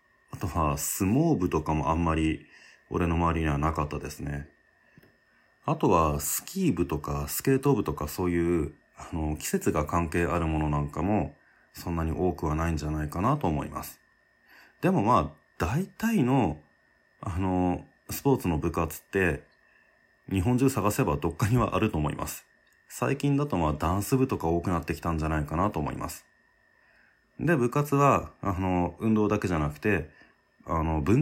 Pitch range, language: 75-100 Hz, Japanese